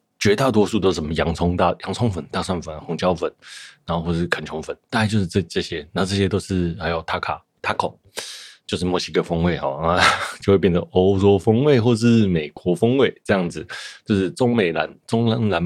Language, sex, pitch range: Chinese, male, 85-105 Hz